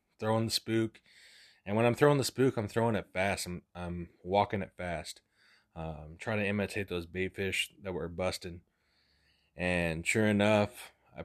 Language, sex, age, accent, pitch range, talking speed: English, male, 20-39, American, 90-105 Hz, 170 wpm